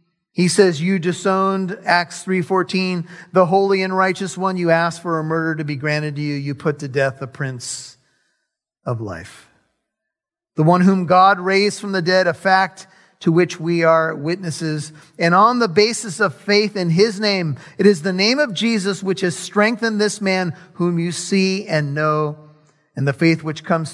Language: English